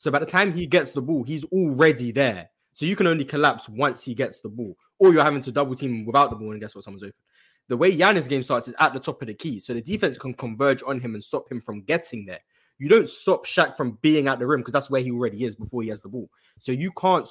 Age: 20-39